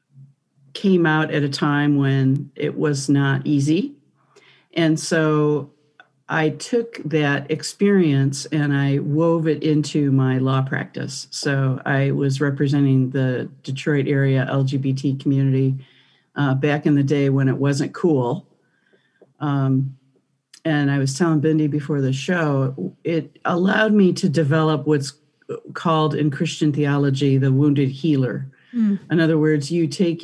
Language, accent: English, American